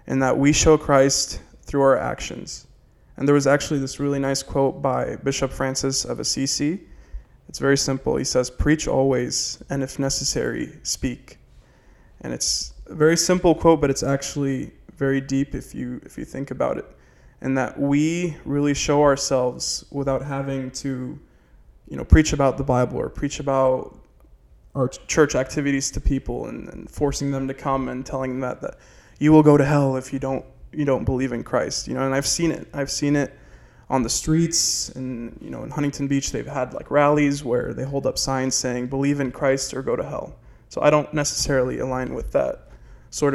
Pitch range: 130-145 Hz